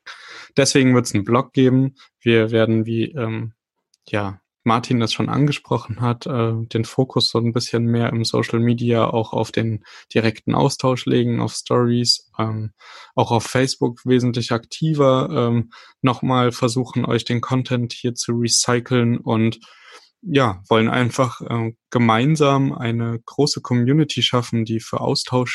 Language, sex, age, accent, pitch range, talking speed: German, male, 10-29, German, 110-130 Hz, 145 wpm